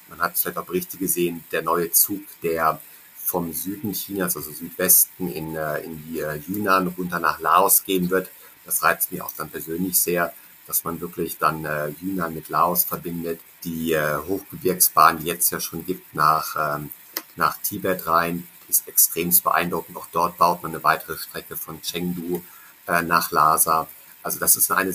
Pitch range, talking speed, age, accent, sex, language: 80-90 Hz, 170 wpm, 50-69, German, male, German